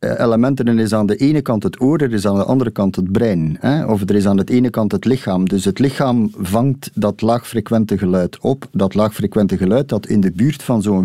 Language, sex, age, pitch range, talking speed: Dutch, male, 50-69, 100-130 Hz, 230 wpm